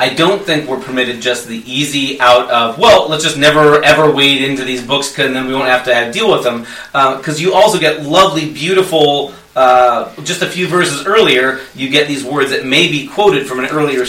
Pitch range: 125-150 Hz